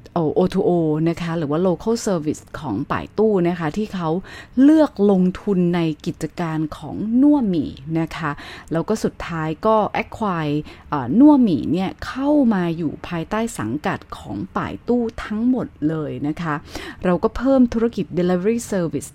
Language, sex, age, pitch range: Thai, female, 20-39, 160-220 Hz